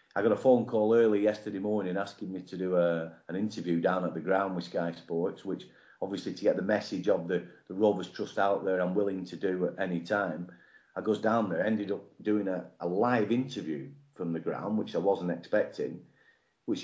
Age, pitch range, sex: 40-59, 95-120 Hz, male